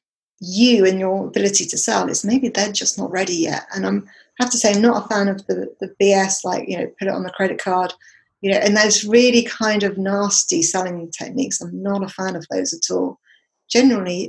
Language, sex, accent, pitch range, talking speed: English, female, British, 195-240 Hz, 230 wpm